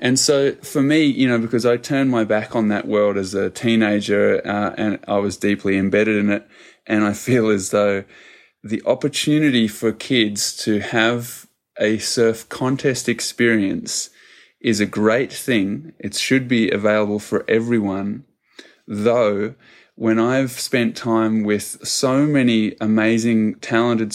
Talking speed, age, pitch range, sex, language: 150 wpm, 20-39, 105-115 Hz, male, English